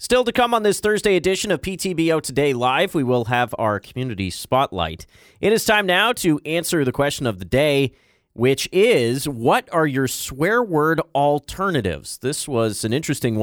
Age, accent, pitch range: 30-49, American, 100-150 Hz